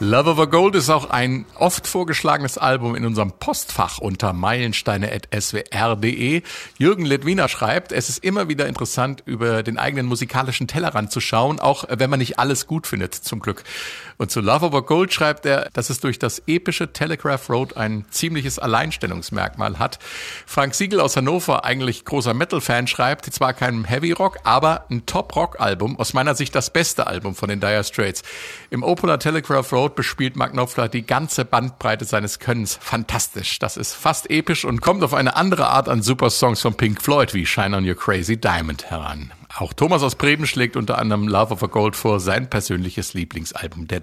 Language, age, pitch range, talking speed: German, 50-69, 110-145 Hz, 180 wpm